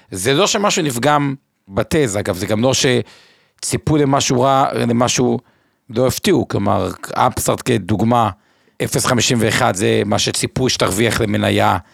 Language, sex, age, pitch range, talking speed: Hebrew, male, 50-69, 110-150 Hz, 120 wpm